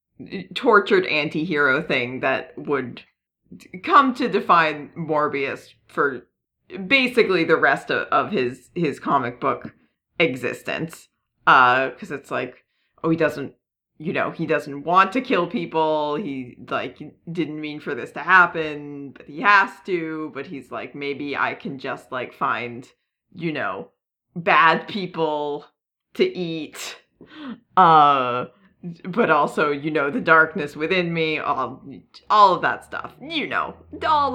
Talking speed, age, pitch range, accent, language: 140 wpm, 30-49, 145-195 Hz, American, English